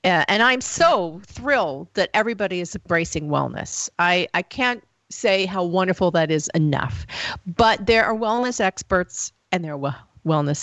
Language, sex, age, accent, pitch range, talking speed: English, female, 40-59, American, 160-195 Hz, 150 wpm